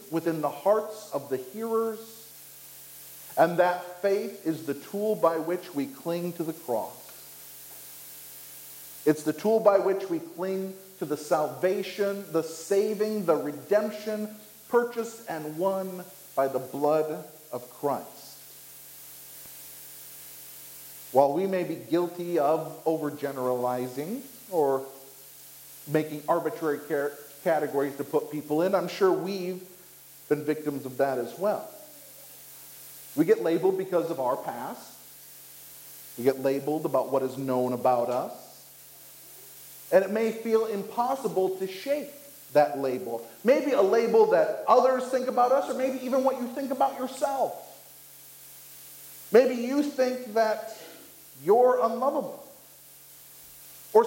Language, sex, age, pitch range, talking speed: English, male, 50-69, 140-225 Hz, 125 wpm